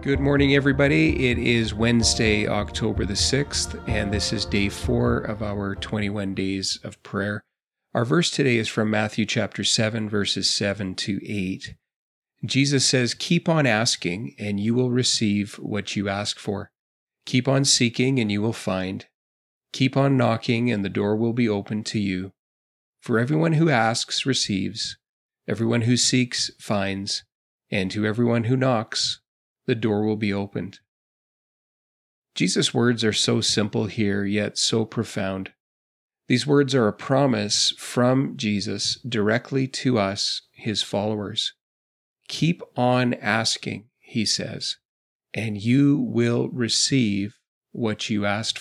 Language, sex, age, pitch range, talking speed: English, male, 40-59, 100-130 Hz, 140 wpm